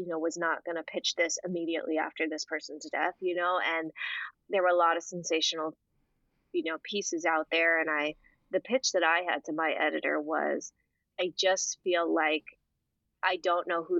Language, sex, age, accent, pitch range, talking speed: English, female, 20-39, American, 165-195 Hz, 195 wpm